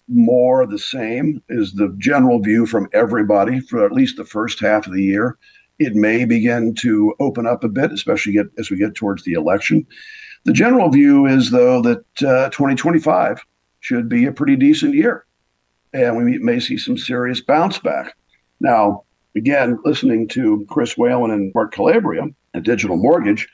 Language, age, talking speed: English, 50-69, 175 wpm